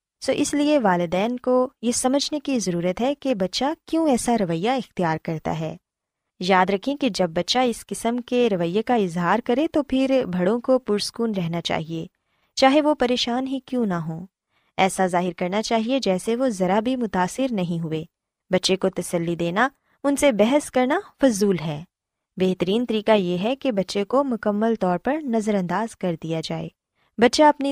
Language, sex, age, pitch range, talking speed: Urdu, female, 20-39, 185-260 Hz, 180 wpm